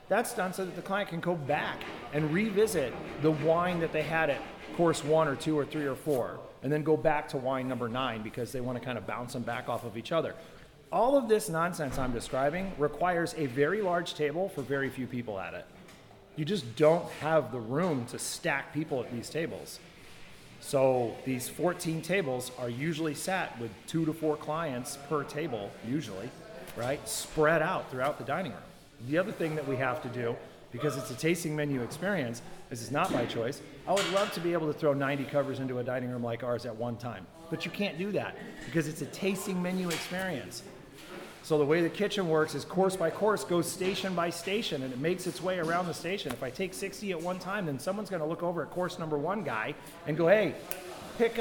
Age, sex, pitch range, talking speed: 30-49, male, 135-185 Hz, 220 wpm